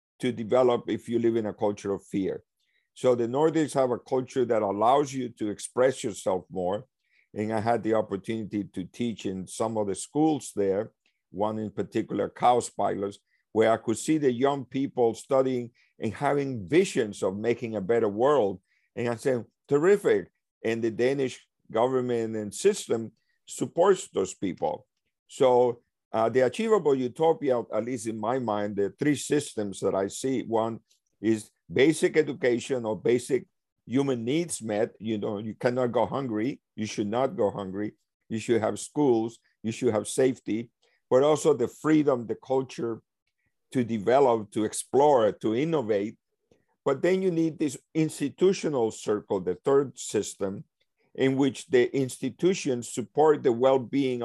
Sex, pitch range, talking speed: male, 110-135 Hz, 155 wpm